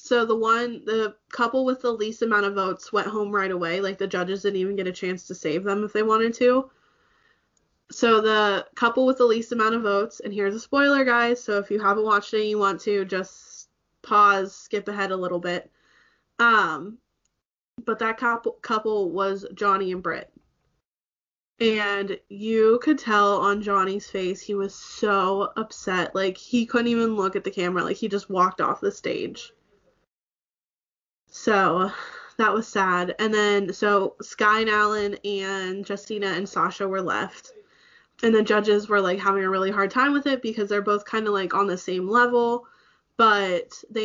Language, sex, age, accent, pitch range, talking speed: English, female, 20-39, American, 195-225 Hz, 185 wpm